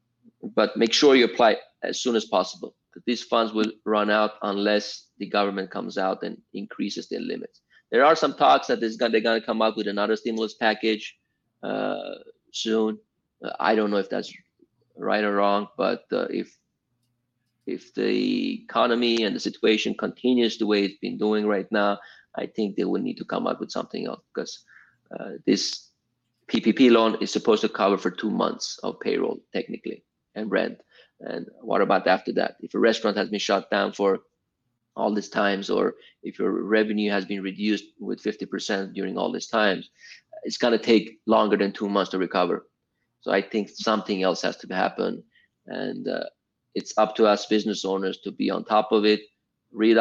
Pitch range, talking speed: 100-115 Hz, 185 wpm